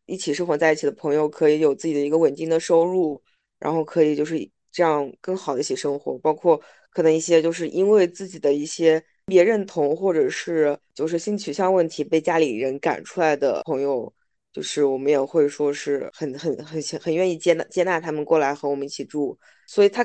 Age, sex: 20-39, female